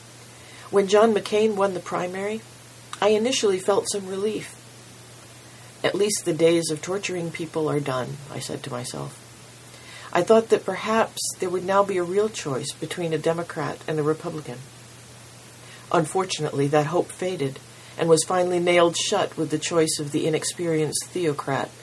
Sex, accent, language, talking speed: female, American, English, 155 wpm